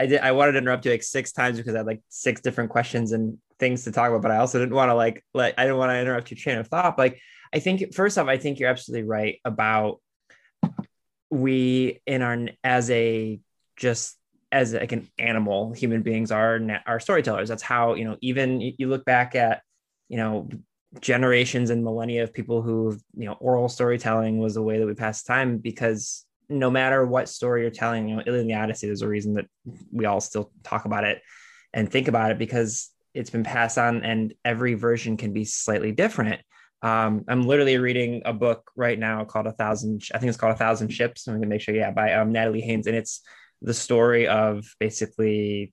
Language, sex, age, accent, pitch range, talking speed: English, male, 20-39, American, 110-125 Hz, 220 wpm